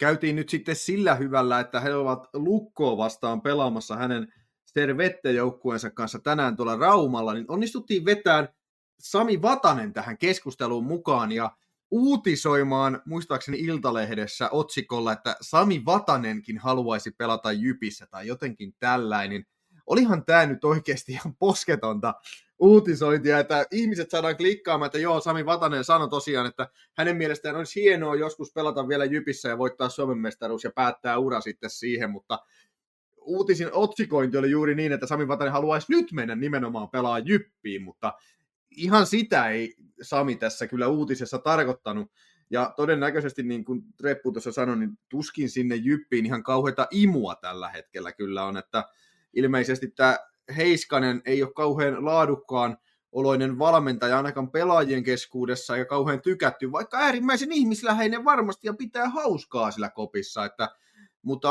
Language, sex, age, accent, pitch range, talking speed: Finnish, male, 30-49, native, 120-170 Hz, 140 wpm